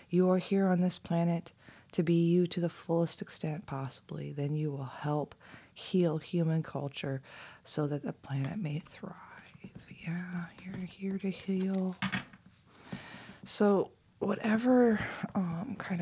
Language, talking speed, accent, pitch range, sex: English, 130 wpm, American, 145-175 Hz, female